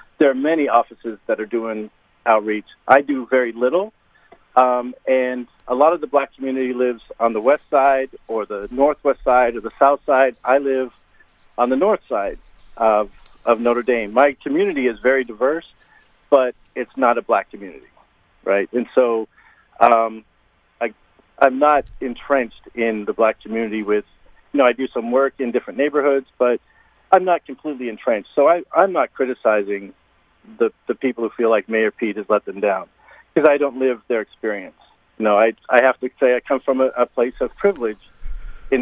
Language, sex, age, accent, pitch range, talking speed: English, male, 50-69, American, 115-135 Hz, 185 wpm